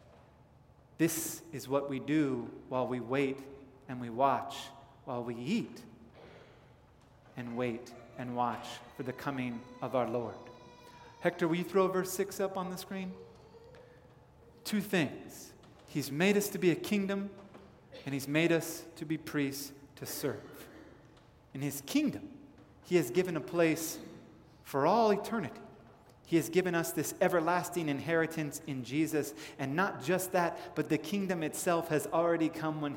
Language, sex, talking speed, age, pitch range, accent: English, male, 155 wpm, 30-49, 140-175 Hz, American